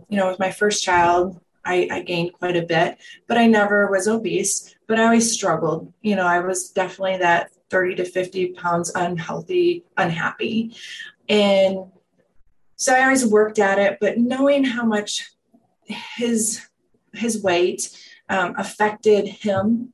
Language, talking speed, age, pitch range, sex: English, 150 wpm, 30-49, 175-215 Hz, female